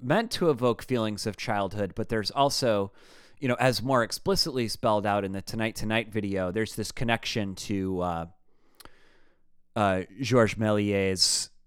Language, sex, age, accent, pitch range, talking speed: English, male, 30-49, American, 95-125 Hz, 150 wpm